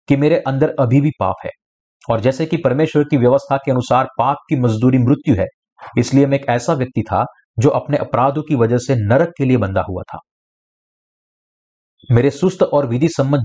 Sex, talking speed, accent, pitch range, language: male, 190 wpm, native, 115-145 Hz, Hindi